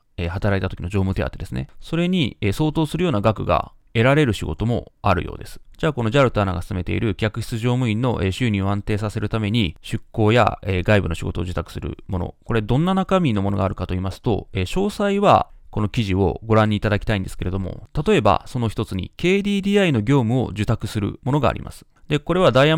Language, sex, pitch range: Japanese, male, 100-145 Hz